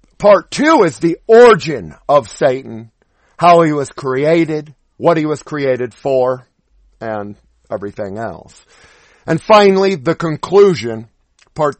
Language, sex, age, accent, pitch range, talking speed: English, male, 50-69, American, 135-190 Hz, 120 wpm